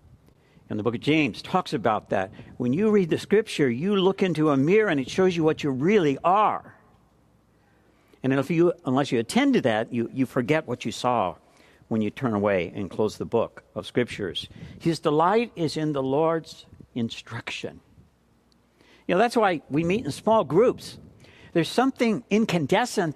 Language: English